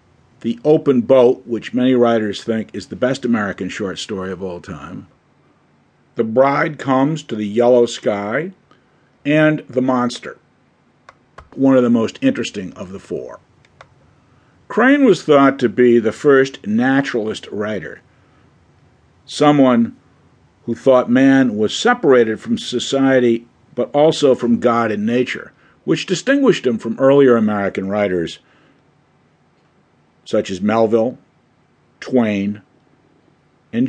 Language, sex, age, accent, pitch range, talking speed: English, male, 50-69, American, 115-150 Hz, 120 wpm